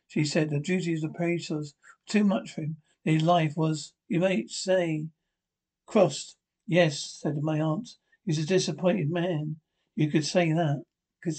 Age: 60-79